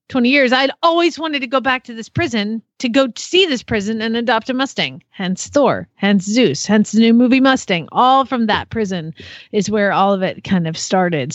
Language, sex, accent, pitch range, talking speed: English, female, American, 195-245 Hz, 215 wpm